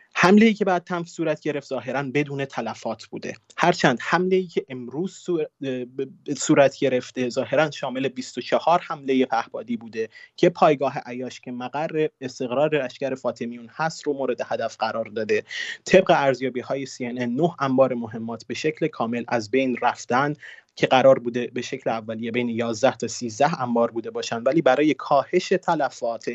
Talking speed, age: 155 wpm, 30-49